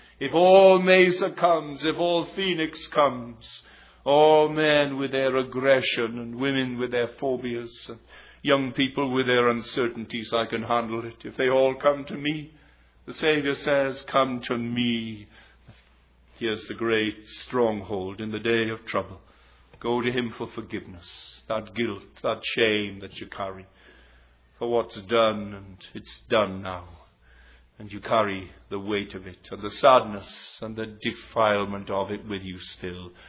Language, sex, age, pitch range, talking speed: English, male, 50-69, 105-130 Hz, 155 wpm